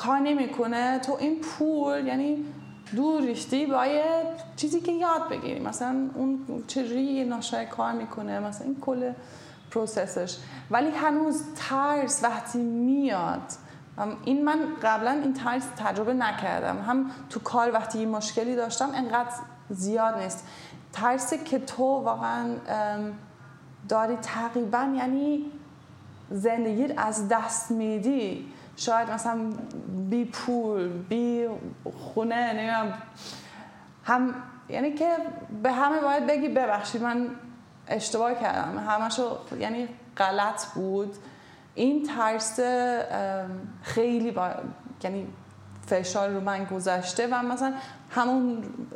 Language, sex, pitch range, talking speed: Persian, female, 205-265 Hz, 110 wpm